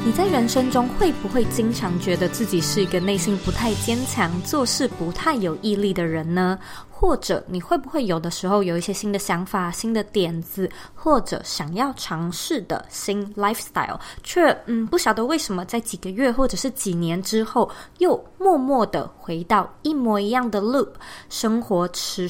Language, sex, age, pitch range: Chinese, female, 20-39, 180-255 Hz